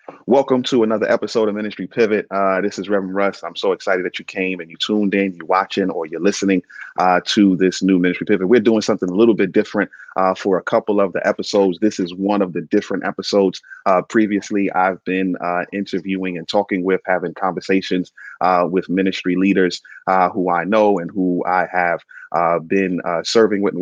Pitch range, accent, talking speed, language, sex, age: 90-100 Hz, American, 210 wpm, English, male, 30-49